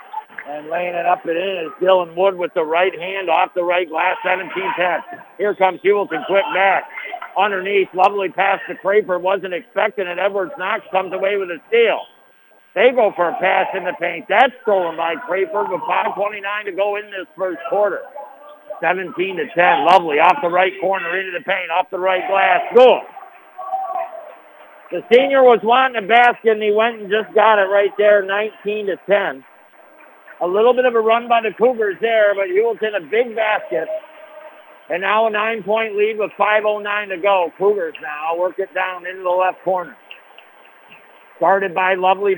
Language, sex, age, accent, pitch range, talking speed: English, male, 60-79, American, 185-225 Hz, 175 wpm